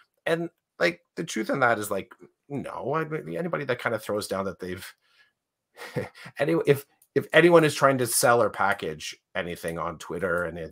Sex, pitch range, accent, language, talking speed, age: male, 90-115 Hz, American, English, 180 wpm, 30-49